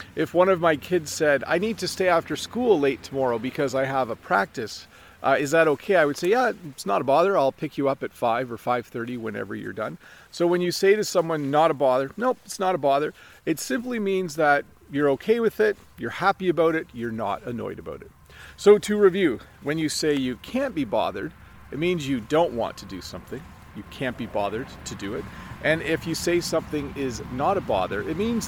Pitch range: 130-175 Hz